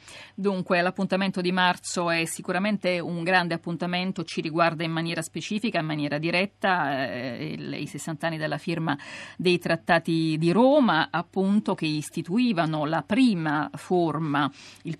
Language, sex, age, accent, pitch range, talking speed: Italian, female, 50-69, native, 160-185 Hz, 135 wpm